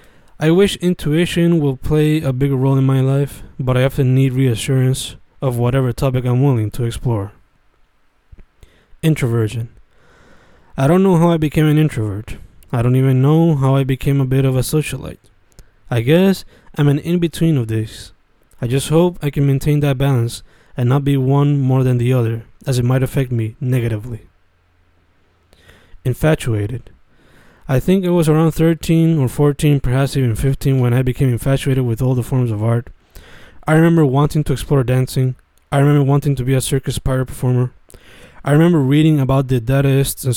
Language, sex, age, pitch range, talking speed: Spanish, male, 20-39, 120-145 Hz, 175 wpm